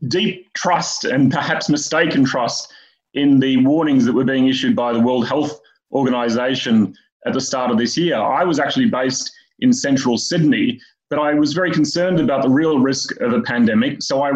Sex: male